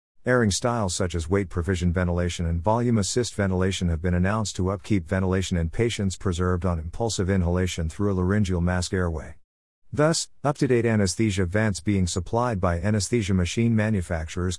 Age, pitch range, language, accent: 50-69, 90-110 Hz, English, American